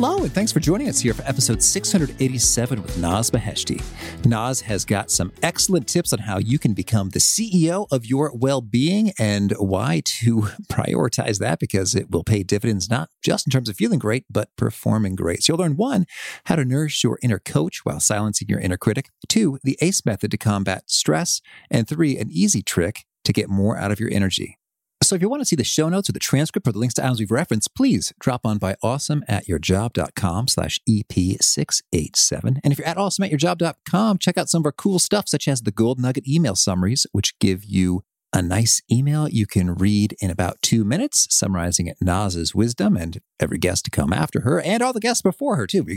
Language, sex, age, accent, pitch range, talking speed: English, male, 40-59, American, 100-150 Hz, 210 wpm